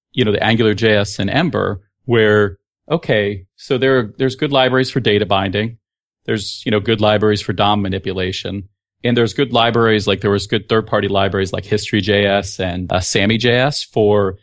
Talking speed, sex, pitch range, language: 185 wpm, male, 100-120 Hz, English